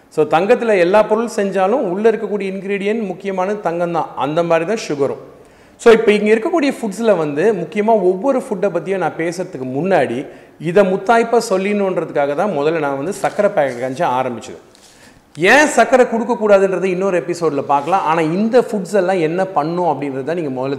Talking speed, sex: 155 wpm, male